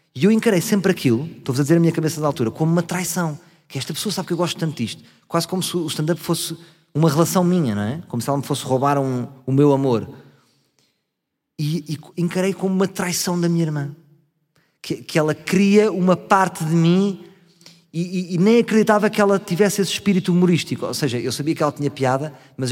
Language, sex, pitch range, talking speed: Portuguese, male, 135-165 Hz, 215 wpm